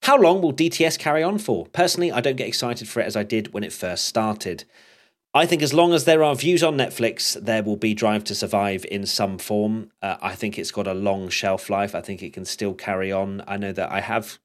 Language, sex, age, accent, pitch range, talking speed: English, male, 30-49, British, 100-120 Hz, 255 wpm